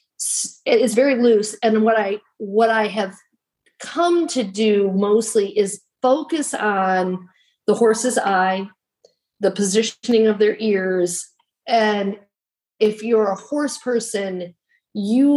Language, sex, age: English, female, 40-59